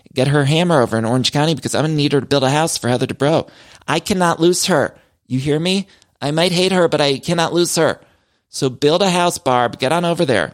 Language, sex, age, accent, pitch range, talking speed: English, male, 30-49, American, 115-155 Hz, 255 wpm